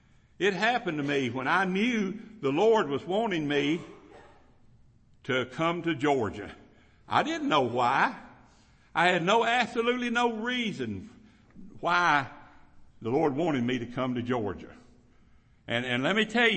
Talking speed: 145 wpm